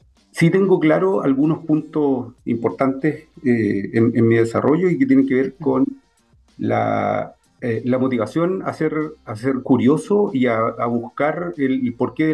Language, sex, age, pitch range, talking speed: Spanish, male, 50-69, 115-150 Hz, 165 wpm